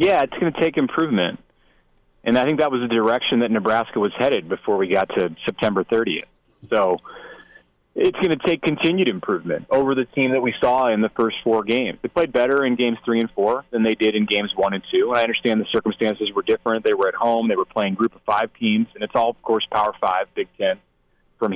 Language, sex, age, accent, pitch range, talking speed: English, male, 30-49, American, 105-130 Hz, 235 wpm